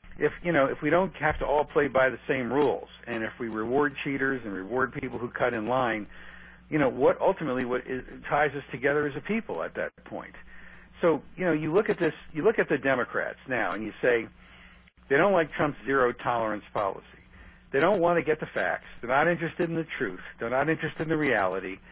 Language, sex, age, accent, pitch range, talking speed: English, male, 50-69, American, 115-155 Hz, 225 wpm